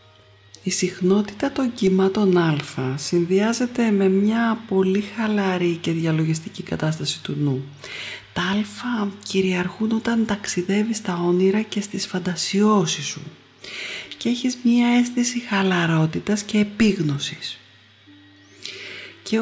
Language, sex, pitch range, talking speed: Greek, female, 160-215 Hz, 105 wpm